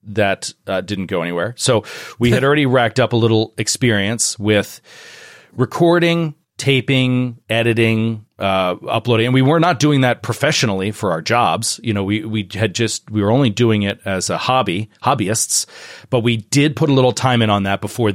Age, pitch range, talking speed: 40-59, 100-120 Hz, 180 wpm